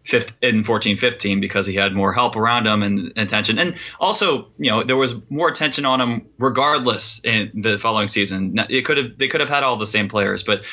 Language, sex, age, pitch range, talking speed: English, male, 20-39, 105-125 Hz, 225 wpm